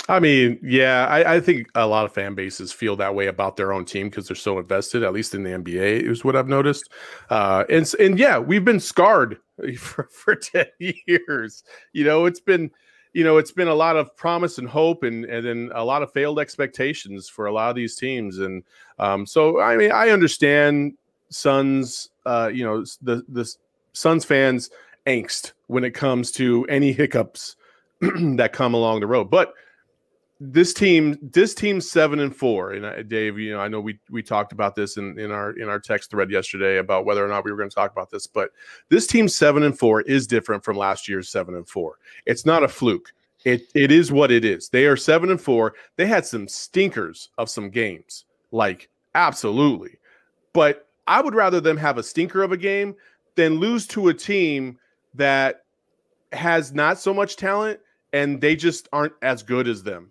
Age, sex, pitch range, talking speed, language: 30-49, male, 110-165 Hz, 205 wpm, English